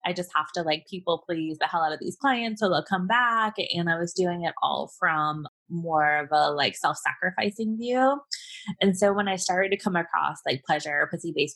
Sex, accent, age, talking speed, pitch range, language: female, American, 20-39, 215 wpm, 165-220 Hz, English